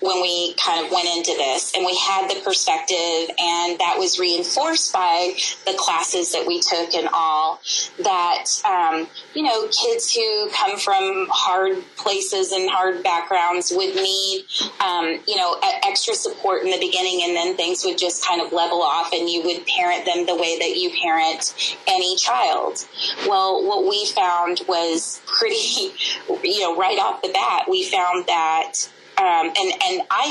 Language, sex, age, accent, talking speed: English, female, 20-39, American, 175 wpm